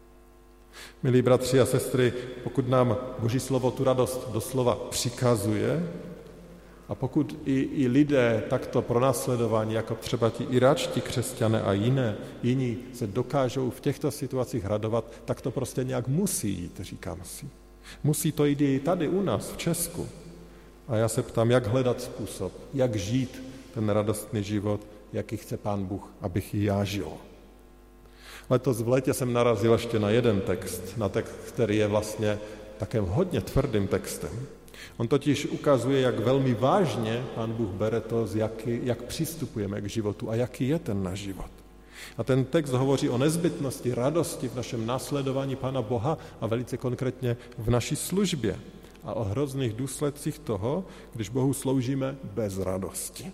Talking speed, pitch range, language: 155 wpm, 110-130 Hz, Slovak